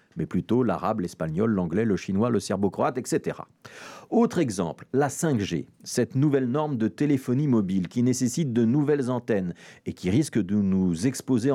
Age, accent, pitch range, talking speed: 50-69, French, 105-150 Hz, 160 wpm